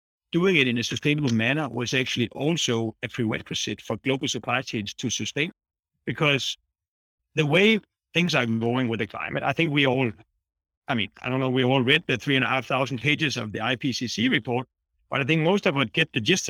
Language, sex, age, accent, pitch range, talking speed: English, male, 60-79, Danish, 125-170 Hz, 210 wpm